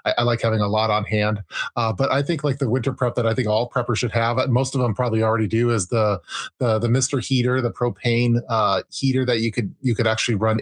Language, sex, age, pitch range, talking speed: English, male, 30-49, 110-125 Hz, 255 wpm